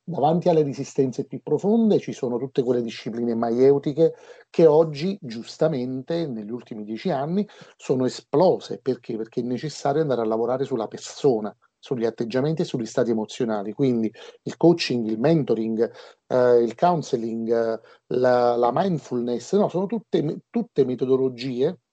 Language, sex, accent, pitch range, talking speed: Italian, male, native, 120-165 Hz, 140 wpm